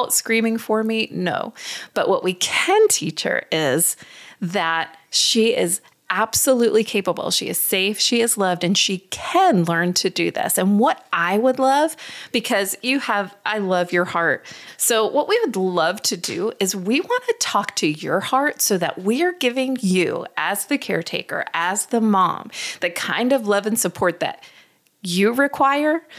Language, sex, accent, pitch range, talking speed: English, female, American, 190-245 Hz, 175 wpm